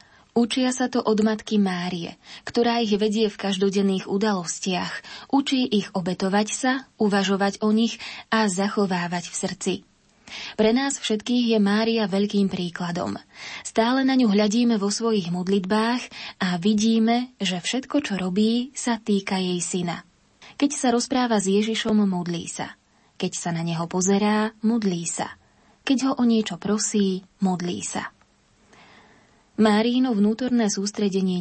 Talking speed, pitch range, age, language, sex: 135 wpm, 180-225 Hz, 20-39, Slovak, female